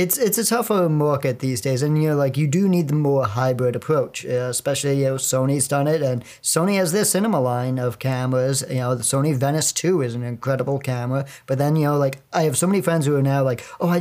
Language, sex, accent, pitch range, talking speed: English, male, American, 130-155 Hz, 250 wpm